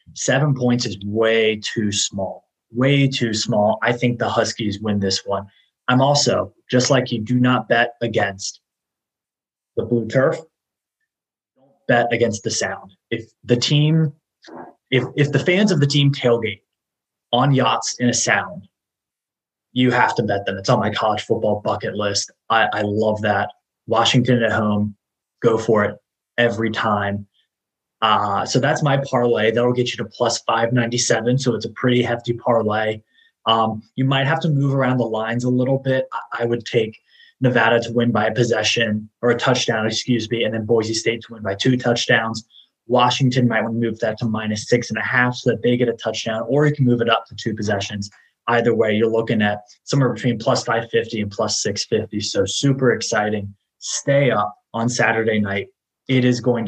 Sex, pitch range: male, 110-125 Hz